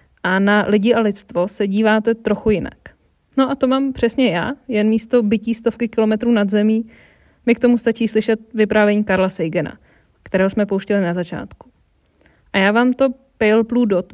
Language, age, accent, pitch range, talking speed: Czech, 20-39, native, 205-235 Hz, 175 wpm